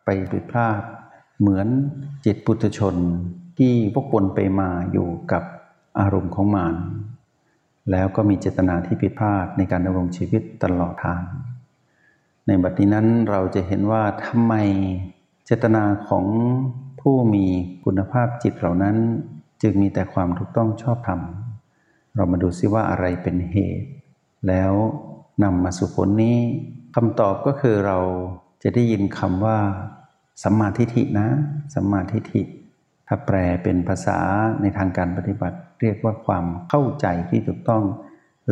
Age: 60-79